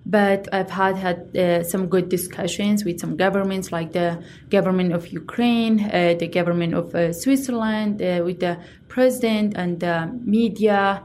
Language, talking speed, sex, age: English, 160 wpm, female, 20-39